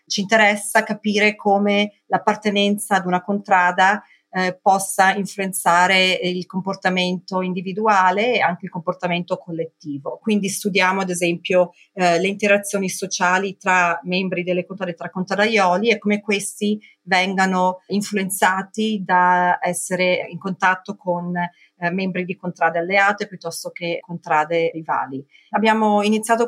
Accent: native